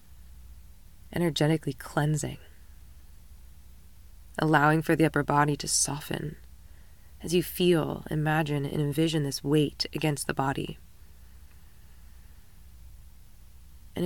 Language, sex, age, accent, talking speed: English, female, 20-39, American, 90 wpm